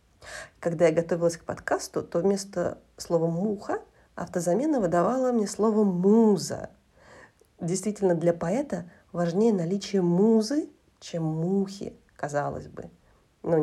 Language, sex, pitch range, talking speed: Russian, female, 170-220 Hz, 110 wpm